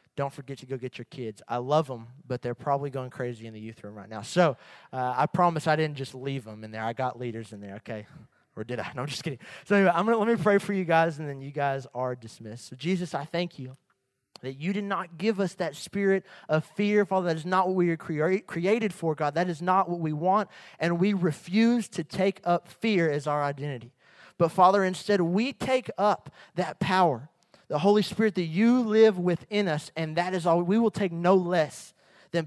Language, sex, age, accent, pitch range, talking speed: English, male, 30-49, American, 140-195 Hz, 240 wpm